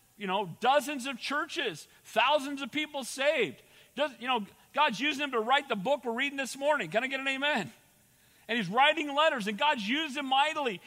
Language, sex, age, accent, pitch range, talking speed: English, male, 40-59, American, 245-295 Hz, 205 wpm